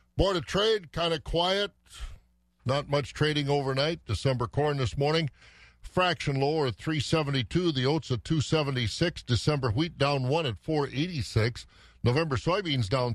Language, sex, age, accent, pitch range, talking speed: English, male, 50-69, American, 115-150 Hz, 170 wpm